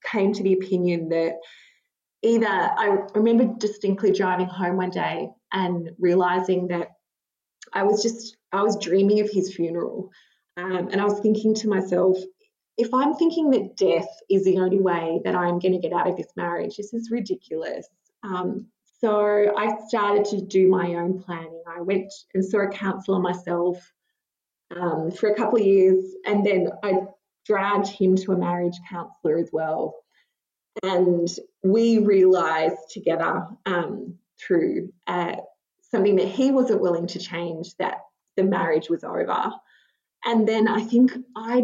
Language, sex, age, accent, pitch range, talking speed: English, female, 20-39, Australian, 180-220 Hz, 160 wpm